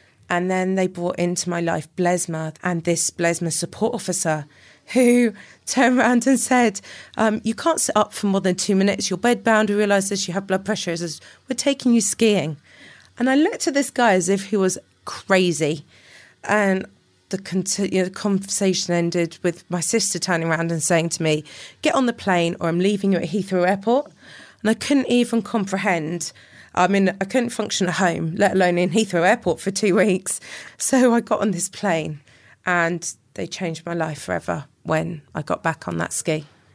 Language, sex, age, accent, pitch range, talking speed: English, female, 20-39, British, 160-200 Hz, 190 wpm